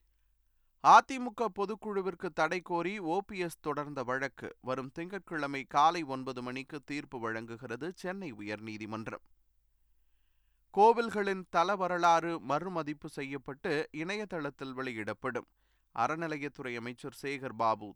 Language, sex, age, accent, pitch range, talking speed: Tamil, male, 20-39, native, 125-175 Hz, 95 wpm